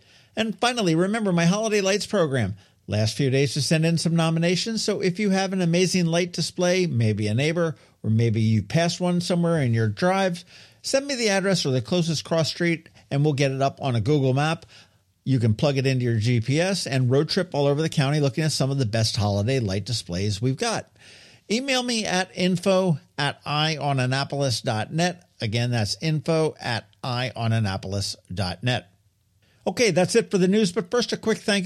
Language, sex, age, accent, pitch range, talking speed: English, male, 50-69, American, 125-180 Hz, 190 wpm